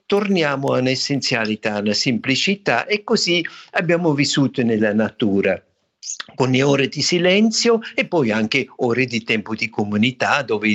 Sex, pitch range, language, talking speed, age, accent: male, 120-170 Hz, Italian, 135 wpm, 60-79, native